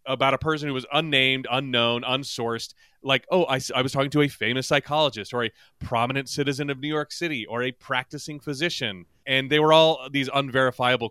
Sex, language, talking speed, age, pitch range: male, English, 195 wpm, 30-49, 125-165 Hz